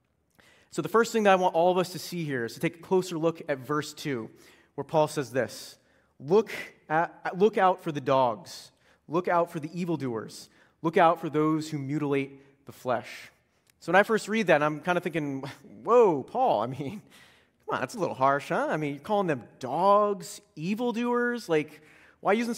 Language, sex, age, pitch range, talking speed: English, male, 30-49, 150-200 Hz, 205 wpm